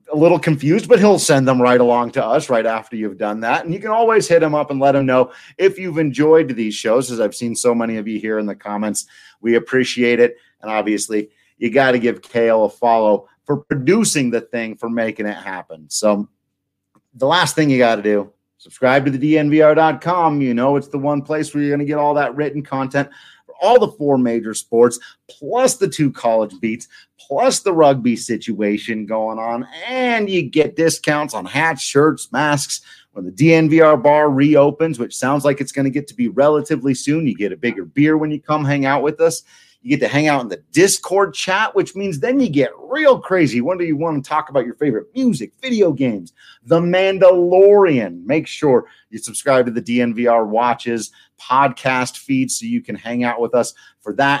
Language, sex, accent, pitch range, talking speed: English, male, American, 120-155 Hz, 210 wpm